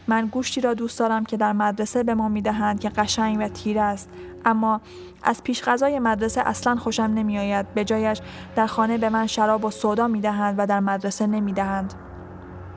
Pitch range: 200-225 Hz